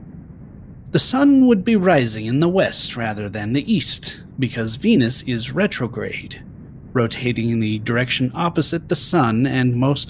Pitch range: 115-160 Hz